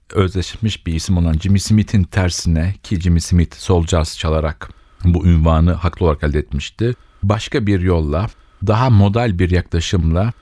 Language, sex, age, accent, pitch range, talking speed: Turkish, male, 40-59, native, 80-95 Hz, 150 wpm